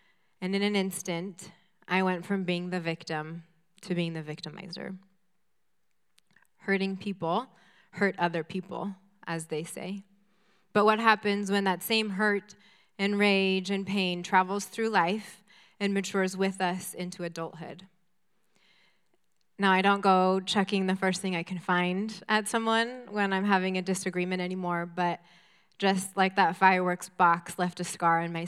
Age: 20-39